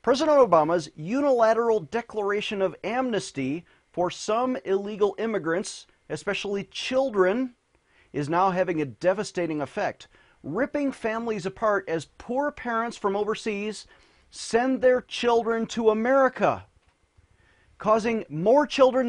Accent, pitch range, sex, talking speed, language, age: American, 165-230 Hz, male, 105 wpm, English, 40-59